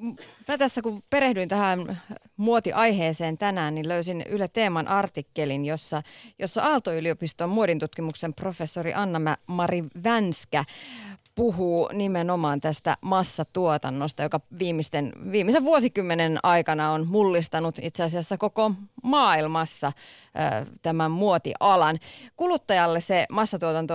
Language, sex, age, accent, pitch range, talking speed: Finnish, female, 30-49, native, 160-210 Hz, 100 wpm